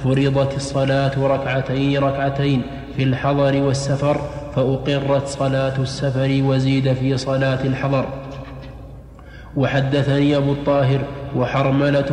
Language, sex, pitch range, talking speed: Arabic, male, 135-140 Hz, 90 wpm